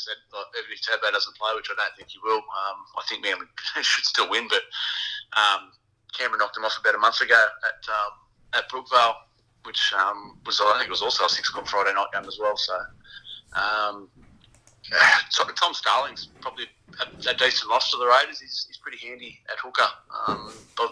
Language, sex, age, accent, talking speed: English, male, 30-49, Australian, 200 wpm